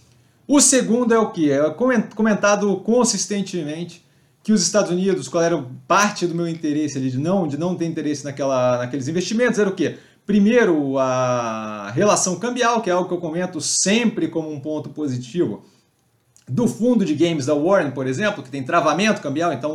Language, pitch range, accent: Portuguese, 145-195 Hz, Brazilian